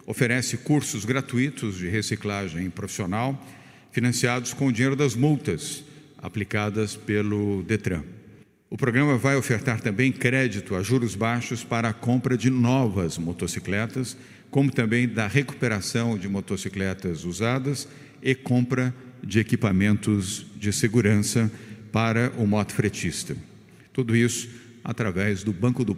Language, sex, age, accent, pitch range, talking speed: Portuguese, male, 50-69, Brazilian, 105-125 Hz, 120 wpm